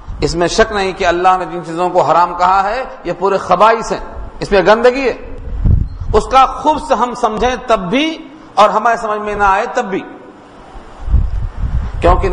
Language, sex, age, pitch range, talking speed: Urdu, male, 50-69, 180-240 Hz, 185 wpm